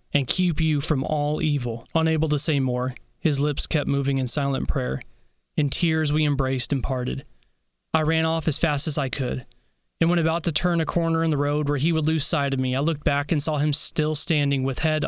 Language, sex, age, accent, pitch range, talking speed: English, male, 20-39, American, 130-155 Hz, 230 wpm